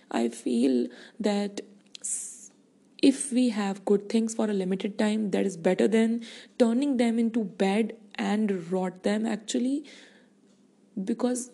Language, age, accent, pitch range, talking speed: English, 20-39, Indian, 200-235 Hz, 130 wpm